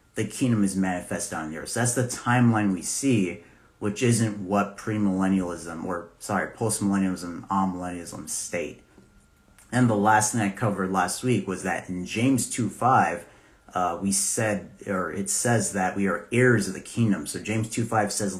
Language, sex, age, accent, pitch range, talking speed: English, male, 30-49, American, 95-115 Hz, 175 wpm